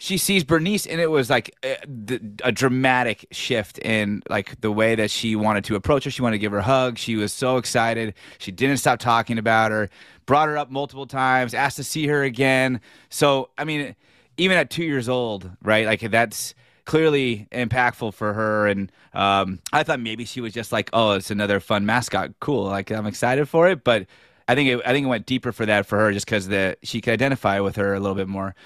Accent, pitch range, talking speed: American, 110-135 Hz, 225 wpm